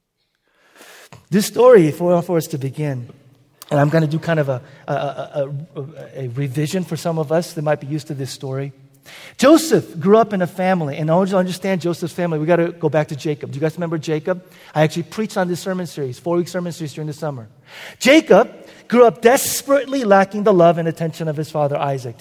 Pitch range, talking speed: 160-250 Hz, 225 wpm